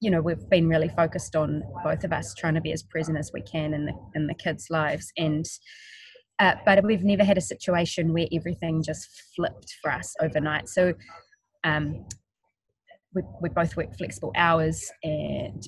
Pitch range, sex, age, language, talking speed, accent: 160-200 Hz, female, 20-39, English, 185 wpm, Australian